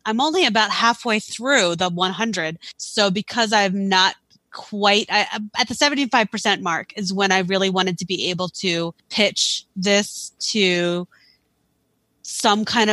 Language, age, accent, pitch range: English, 20-39, American, 185-225 Hz